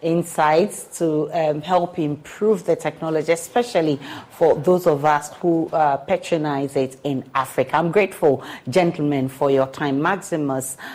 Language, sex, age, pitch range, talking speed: English, female, 40-59, 140-170 Hz, 135 wpm